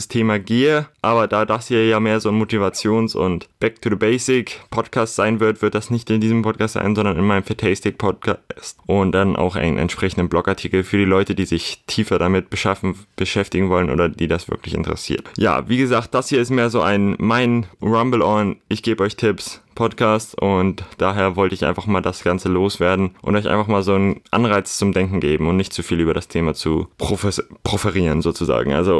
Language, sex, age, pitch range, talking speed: German, male, 20-39, 95-110 Hz, 190 wpm